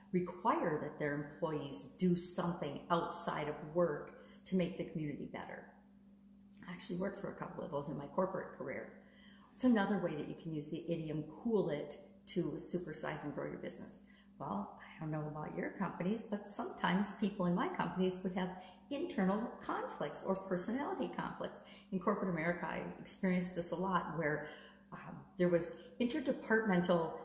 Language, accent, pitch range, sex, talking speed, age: English, American, 165-200 Hz, female, 165 wpm, 50-69